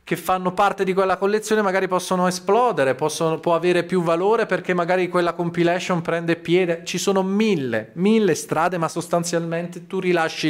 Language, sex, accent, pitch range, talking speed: Italian, male, native, 140-185 Hz, 165 wpm